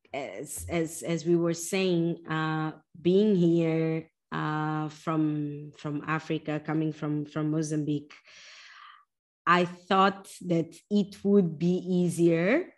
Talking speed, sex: 115 wpm, female